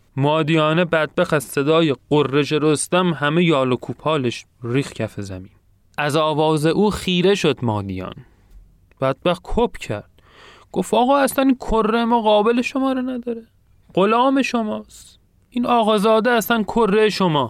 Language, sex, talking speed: Persian, male, 135 wpm